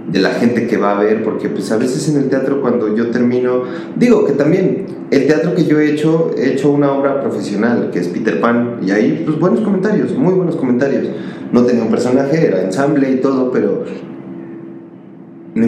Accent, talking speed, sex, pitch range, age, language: Mexican, 205 wpm, male, 95-150 Hz, 30-49, Spanish